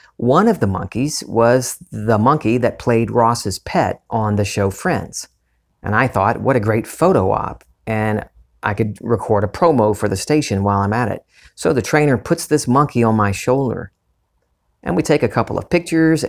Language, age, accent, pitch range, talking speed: English, 40-59, American, 105-125 Hz, 190 wpm